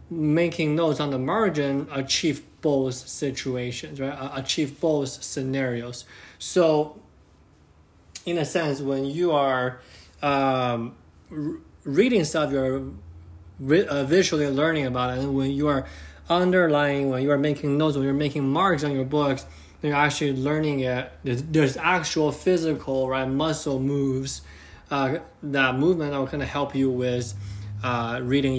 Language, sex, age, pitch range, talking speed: English, male, 20-39, 130-155 Hz, 140 wpm